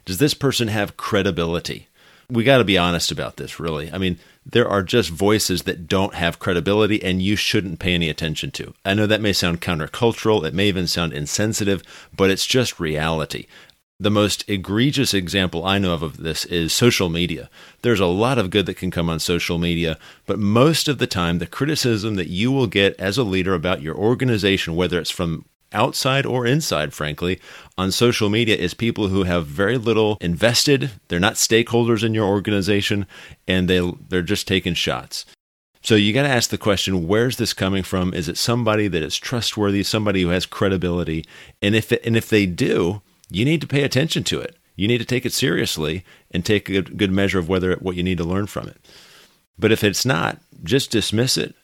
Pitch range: 90-115 Hz